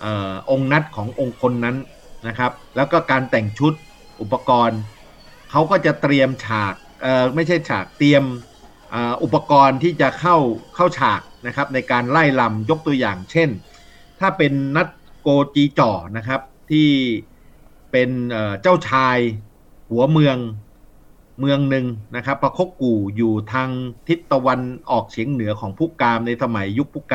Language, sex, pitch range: Thai, male, 115-145 Hz